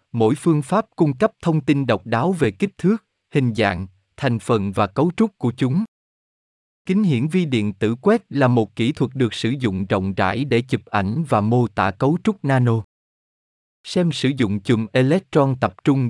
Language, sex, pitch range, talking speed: Vietnamese, male, 105-145 Hz, 195 wpm